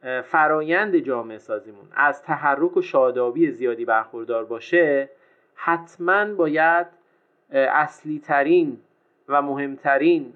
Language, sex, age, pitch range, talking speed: Persian, male, 30-49, 135-220 Hz, 95 wpm